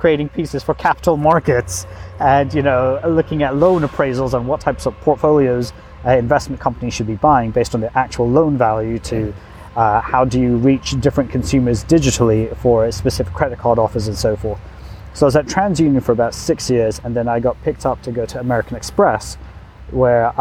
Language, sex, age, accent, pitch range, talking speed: English, male, 30-49, British, 115-135 Hz, 200 wpm